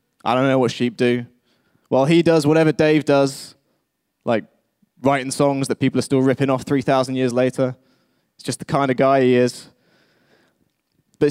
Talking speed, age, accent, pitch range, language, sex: 175 wpm, 20-39, British, 125-150 Hz, English, male